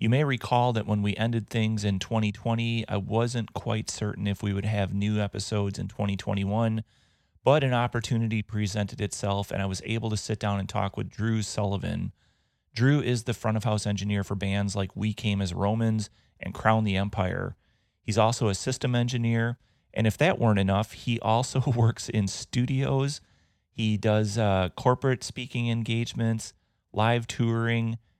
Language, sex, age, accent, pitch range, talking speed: English, male, 30-49, American, 100-115 Hz, 165 wpm